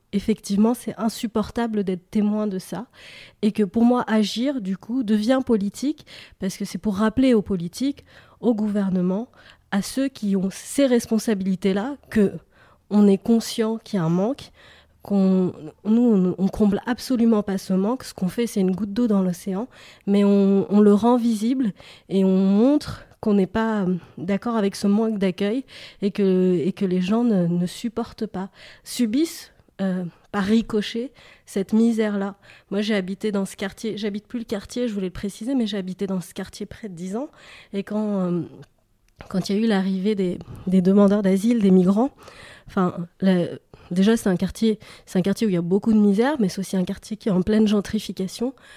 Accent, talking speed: French, 190 wpm